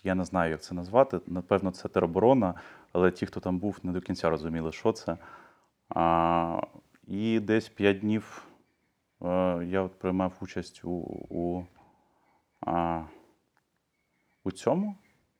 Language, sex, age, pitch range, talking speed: Ukrainian, male, 20-39, 90-100 Hz, 135 wpm